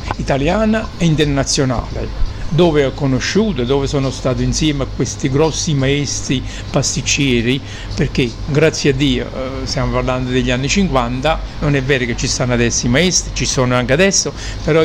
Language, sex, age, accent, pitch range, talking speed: Italian, male, 50-69, native, 130-160 Hz, 155 wpm